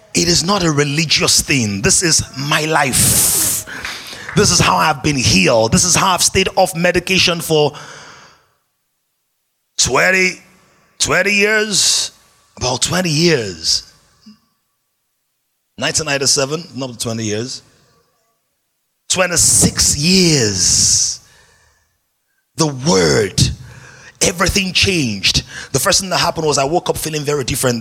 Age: 30-49